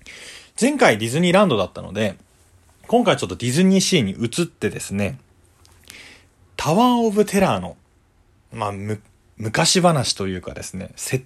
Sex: male